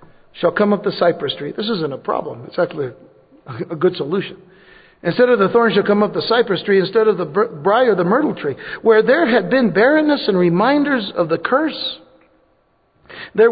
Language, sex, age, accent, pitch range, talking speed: English, male, 60-79, American, 175-220 Hz, 195 wpm